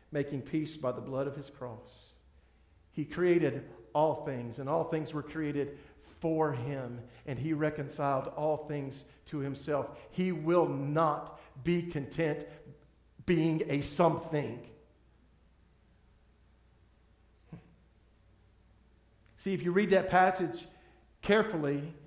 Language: English